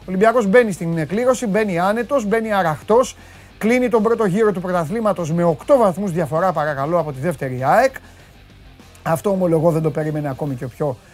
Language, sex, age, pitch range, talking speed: Greek, male, 30-49, 155-210 Hz, 180 wpm